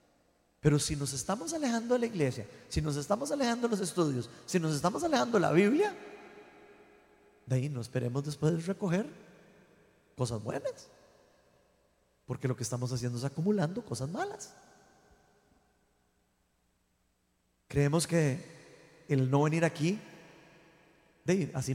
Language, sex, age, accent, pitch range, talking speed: Spanish, male, 30-49, Mexican, 140-215 Hz, 130 wpm